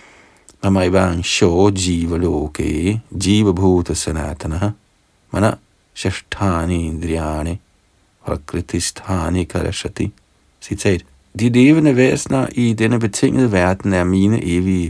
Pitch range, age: 90-115 Hz, 50-69